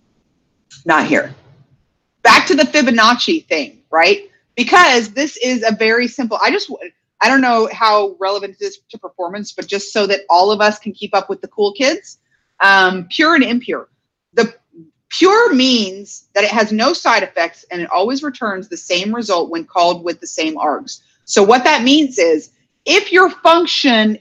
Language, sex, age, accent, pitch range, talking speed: English, female, 30-49, American, 190-275 Hz, 180 wpm